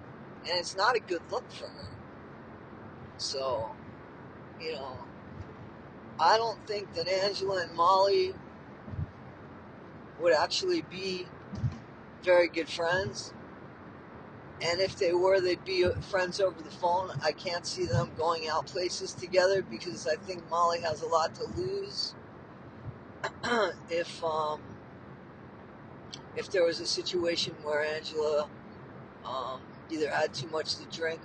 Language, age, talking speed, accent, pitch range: English, 50-69, 130 wpm, American, 170-210 Hz